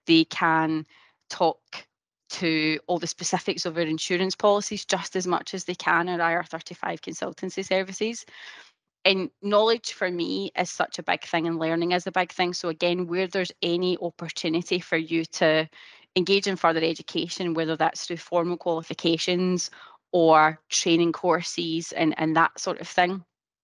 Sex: female